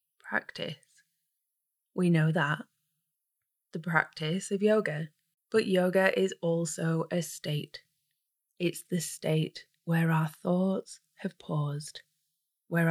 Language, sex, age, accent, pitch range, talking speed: English, female, 20-39, British, 155-195 Hz, 105 wpm